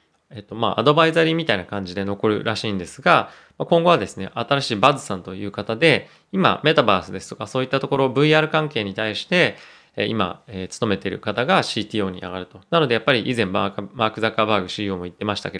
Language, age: Japanese, 20-39